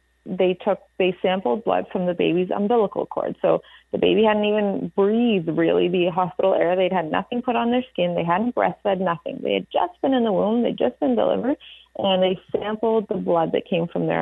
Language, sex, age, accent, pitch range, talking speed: English, female, 30-49, American, 180-235 Hz, 215 wpm